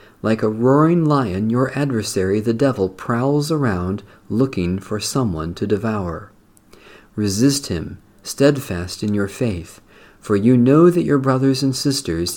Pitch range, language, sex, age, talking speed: 100-135 Hz, English, male, 50-69, 140 wpm